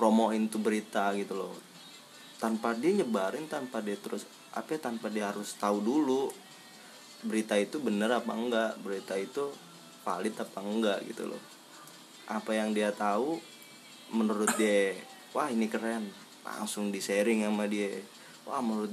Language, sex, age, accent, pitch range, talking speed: Indonesian, male, 20-39, native, 100-125 Hz, 145 wpm